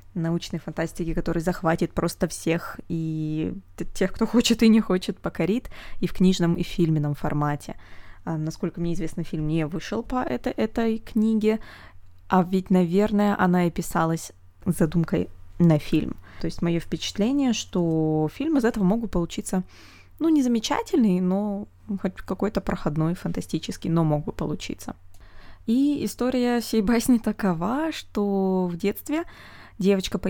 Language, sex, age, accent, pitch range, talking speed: Russian, female, 20-39, native, 165-210 Hz, 145 wpm